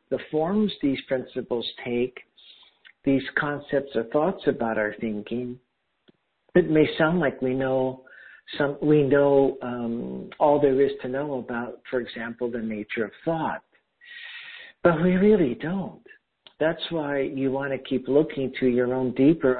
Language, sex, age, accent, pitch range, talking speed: English, male, 60-79, American, 125-150 Hz, 150 wpm